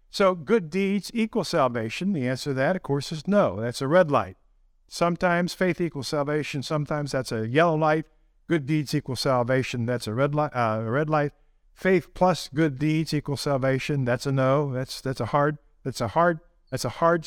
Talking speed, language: 200 wpm, English